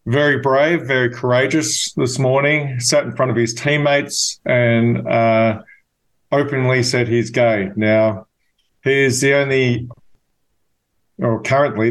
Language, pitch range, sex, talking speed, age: English, 115-135 Hz, male, 125 wpm, 40-59